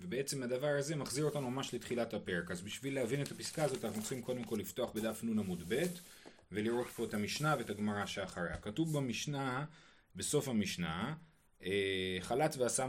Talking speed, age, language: 170 wpm, 30-49, Hebrew